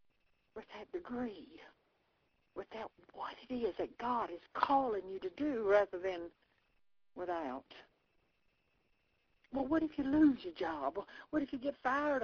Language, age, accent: English, 60-79, American